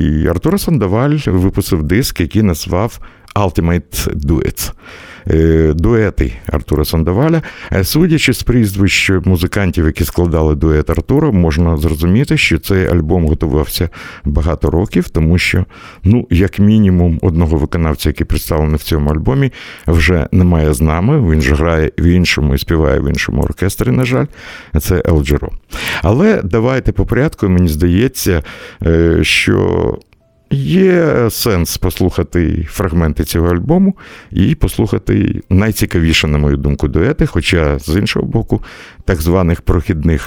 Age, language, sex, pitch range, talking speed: 60-79, Russian, male, 80-100 Hz, 125 wpm